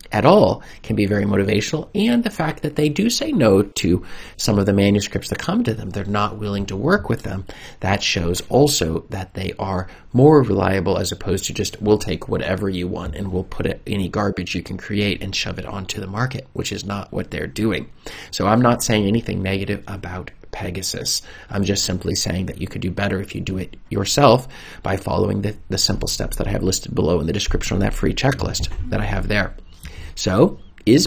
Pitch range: 95-115 Hz